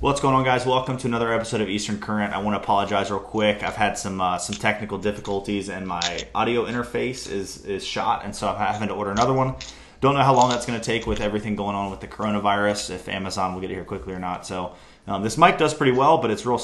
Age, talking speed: 20-39, 255 wpm